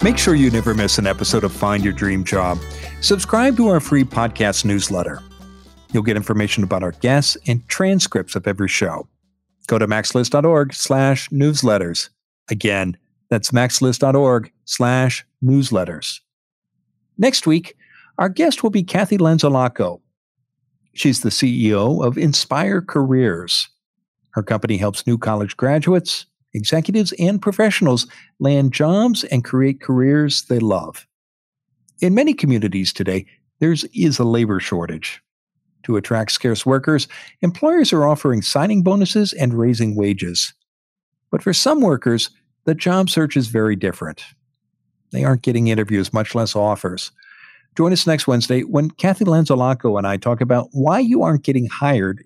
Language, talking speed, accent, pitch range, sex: English, 140 wpm, American, 105-155 Hz, male